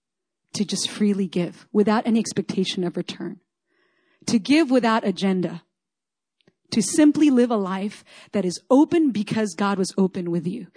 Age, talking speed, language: 30-49, 150 wpm, English